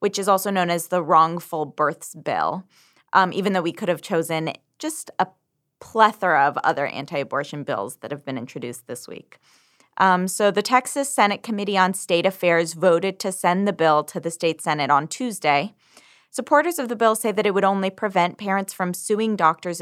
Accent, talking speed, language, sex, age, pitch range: American, 190 wpm, English, female, 20-39, 155-195 Hz